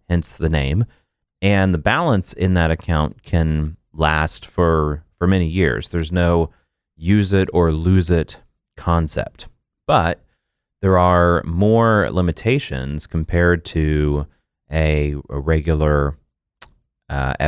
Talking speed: 105 wpm